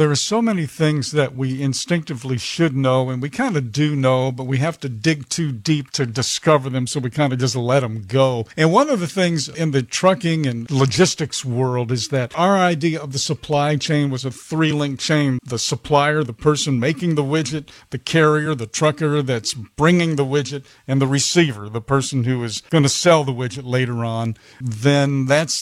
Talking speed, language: 205 wpm, English